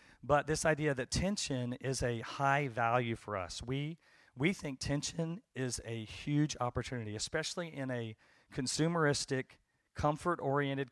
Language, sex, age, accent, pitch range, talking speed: English, male, 40-59, American, 120-145 Hz, 135 wpm